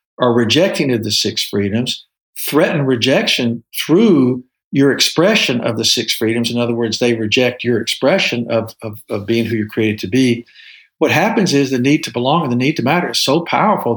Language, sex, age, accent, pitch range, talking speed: English, male, 50-69, American, 120-150 Hz, 200 wpm